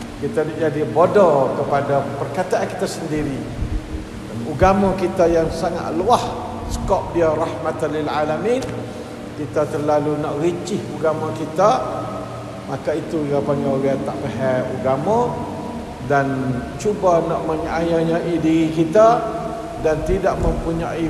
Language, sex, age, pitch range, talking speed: Malay, male, 50-69, 145-225 Hz, 115 wpm